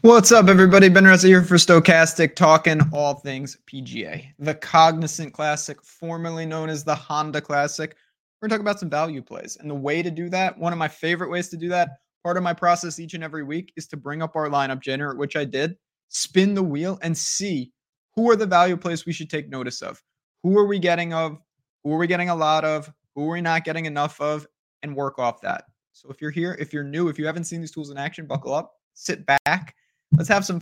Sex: male